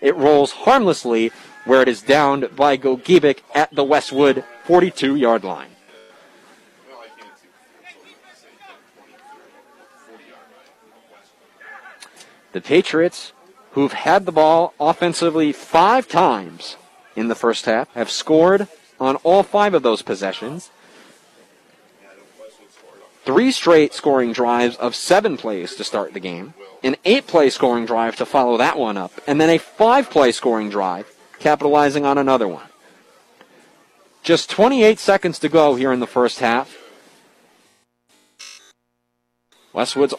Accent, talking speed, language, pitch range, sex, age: American, 115 wpm, English, 125-170 Hz, male, 40-59